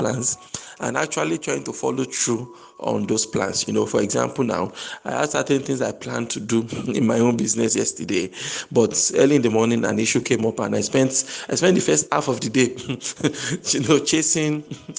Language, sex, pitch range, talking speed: English, male, 115-145 Hz, 205 wpm